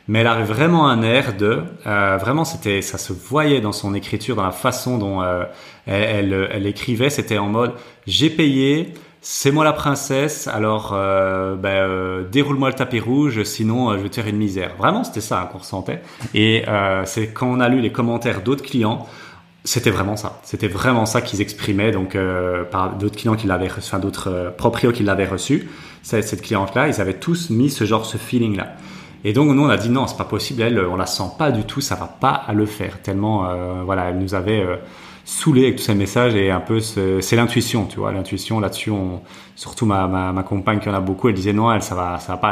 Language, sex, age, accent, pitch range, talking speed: French, male, 30-49, French, 95-120 Hz, 235 wpm